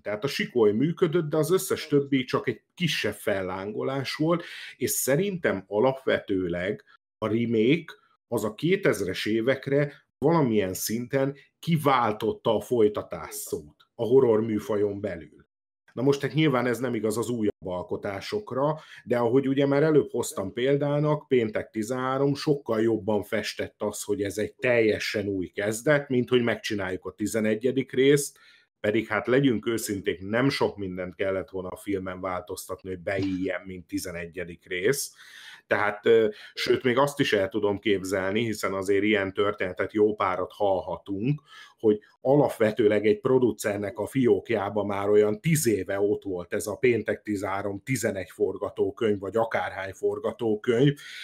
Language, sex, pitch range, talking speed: Hungarian, male, 100-145 Hz, 140 wpm